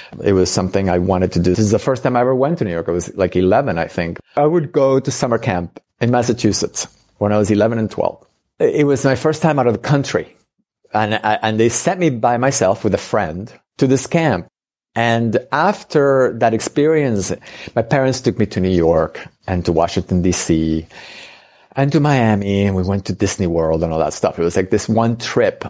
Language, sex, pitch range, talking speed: English, male, 95-130 Hz, 220 wpm